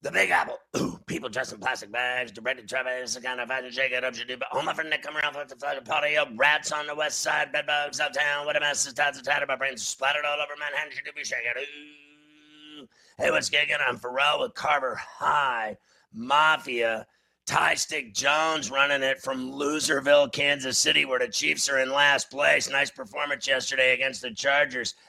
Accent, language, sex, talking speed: American, English, male, 210 wpm